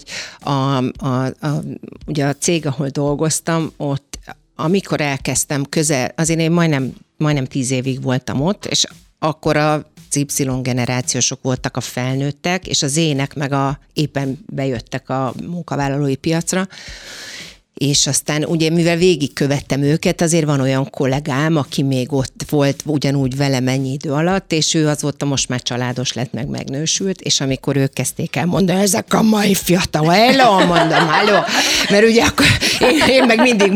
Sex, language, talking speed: female, Hungarian, 145 wpm